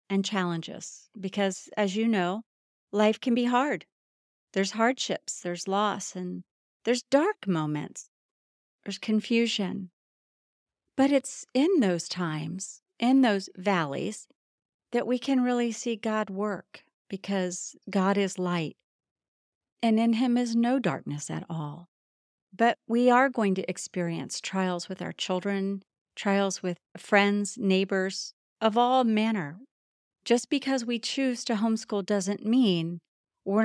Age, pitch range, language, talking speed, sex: 40-59, 180-230 Hz, English, 130 wpm, female